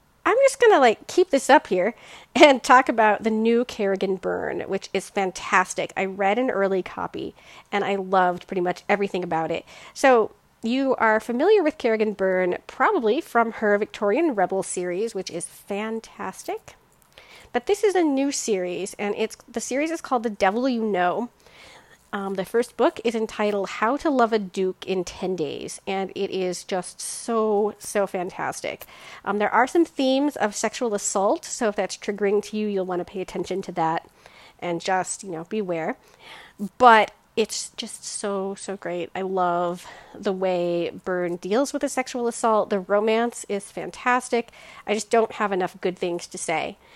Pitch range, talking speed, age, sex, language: 190-245 Hz, 180 wpm, 40-59, female, English